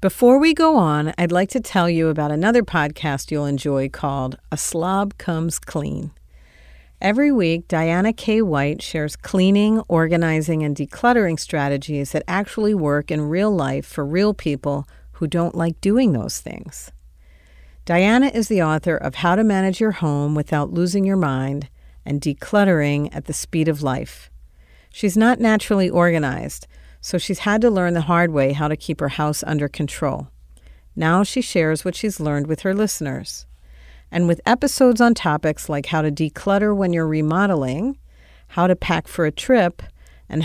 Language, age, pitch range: English, 50-69, 140-190 Hz